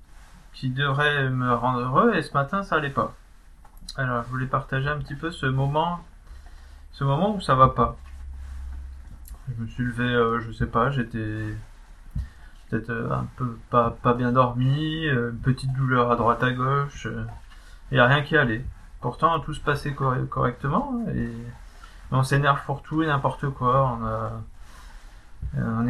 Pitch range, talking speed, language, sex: 110-135 Hz, 165 wpm, French, male